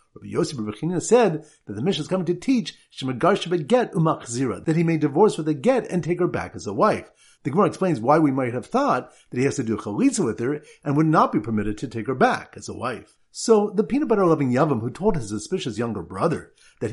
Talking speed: 230 wpm